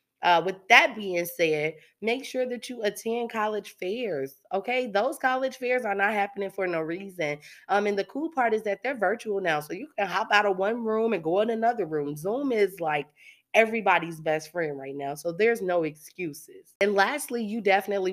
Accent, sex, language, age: American, female, English, 20-39